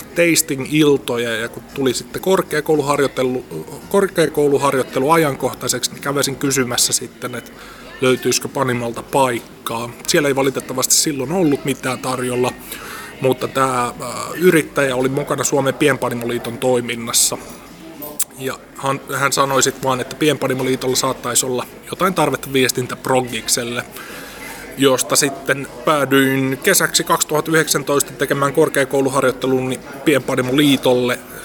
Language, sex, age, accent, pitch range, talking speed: Finnish, male, 30-49, native, 125-145 Hz, 100 wpm